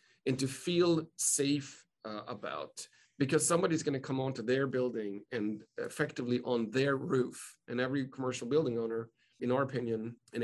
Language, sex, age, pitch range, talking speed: English, male, 40-59, 120-135 Hz, 160 wpm